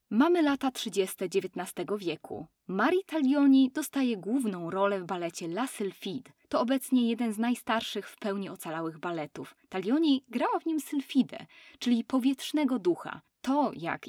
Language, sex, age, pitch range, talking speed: Polish, female, 20-39, 185-265 Hz, 140 wpm